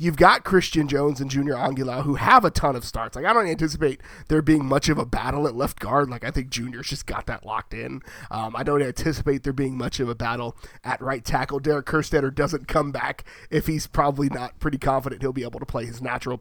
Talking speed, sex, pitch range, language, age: 240 wpm, male, 135-170 Hz, English, 30-49